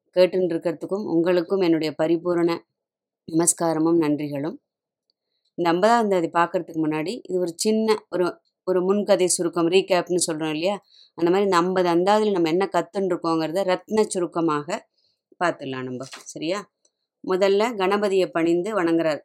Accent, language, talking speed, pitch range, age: native, Tamil, 120 wpm, 165-195 Hz, 20-39